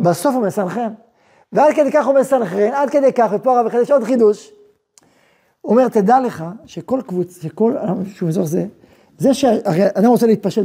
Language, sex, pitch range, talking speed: Hebrew, male, 200-260 Hz, 165 wpm